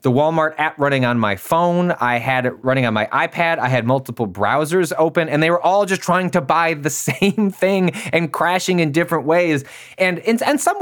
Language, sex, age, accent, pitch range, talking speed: English, male, 20-39, American, 135-180 Hz, 215 wpm